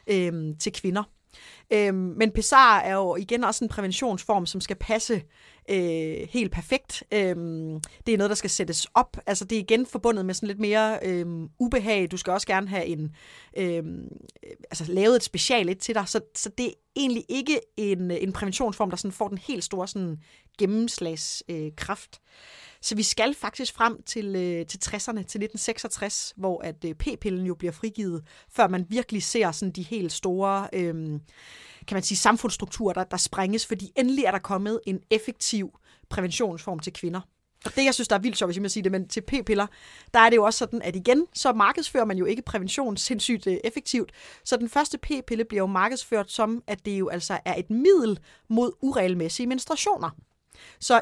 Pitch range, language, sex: 185-230 Hz, Danish, female